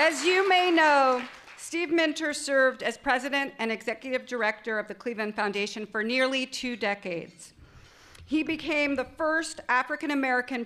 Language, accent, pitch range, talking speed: English, American, 210-265 Hz, 140 wpm